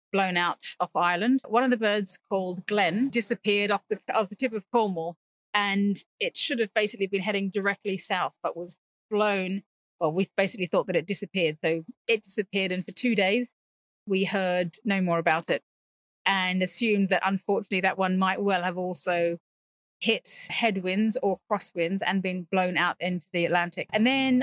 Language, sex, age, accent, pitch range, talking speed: English, female, 30-49, British, 185-220 Hz, 175 wpm